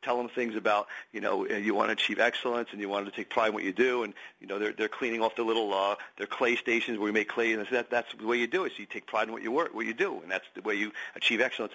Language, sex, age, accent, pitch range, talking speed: English, male, 40-59, American, 105-135 Hz, 330 wpm